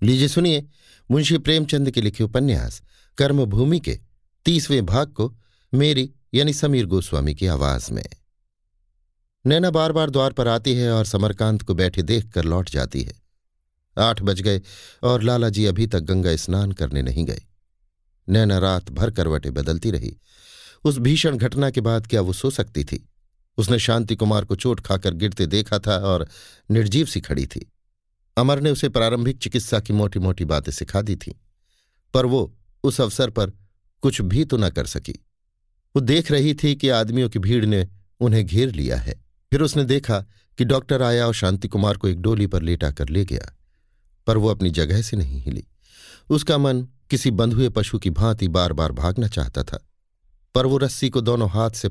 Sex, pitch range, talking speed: male, 90-125 Hz, 180 wpm